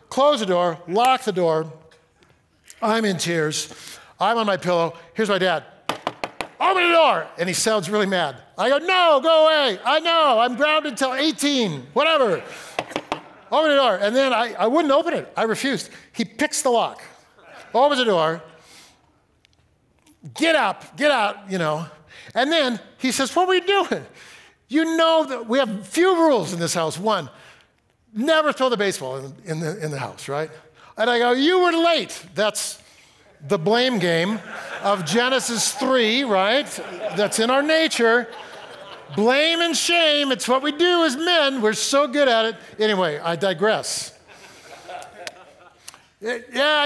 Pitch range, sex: 190-295 Hz, male